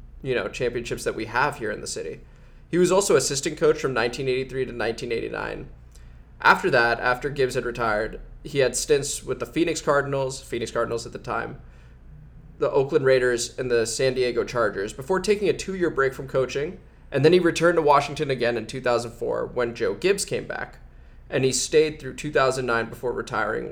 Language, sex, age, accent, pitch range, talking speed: English, male, 20-39, American, 115-140 Hz, 185 wpm